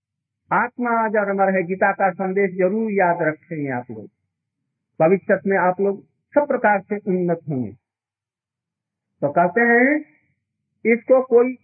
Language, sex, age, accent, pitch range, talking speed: Hindi, male, 50-69, native, 155-250 Hz, 125 wpm